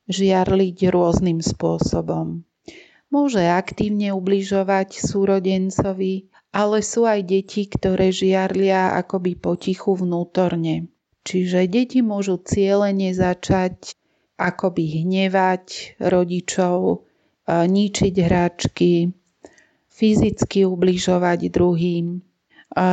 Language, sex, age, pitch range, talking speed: Slovak, female, 40-59, 180-200 Hz, 80 wpm